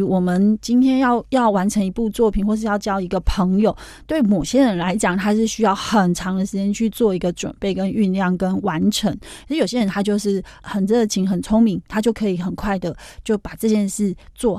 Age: 30-49